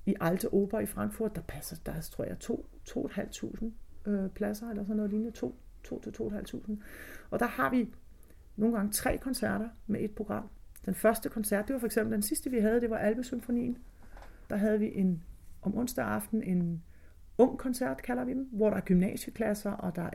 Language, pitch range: Danish, 175-230 Hz